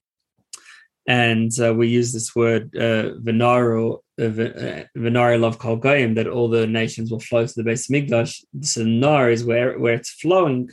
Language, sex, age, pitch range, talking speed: English, male, 20-39, 110-130 Hz, 175 wpm